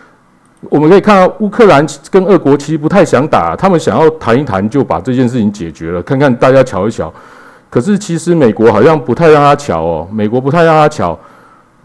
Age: 50-69